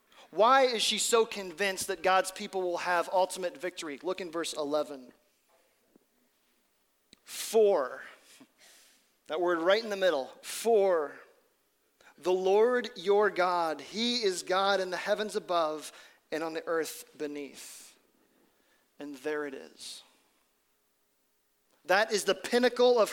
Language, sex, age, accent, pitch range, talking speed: English, male, 40-59, American, 175-220 Hz, 125 wpm